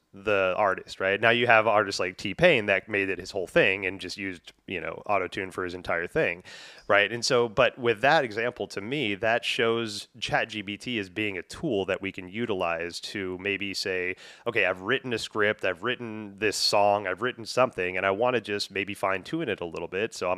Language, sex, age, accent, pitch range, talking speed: English, male, 30-49, American, 90-110 Hz, 225 wpm